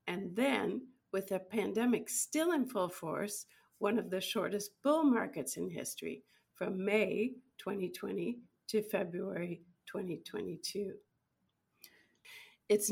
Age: 50-69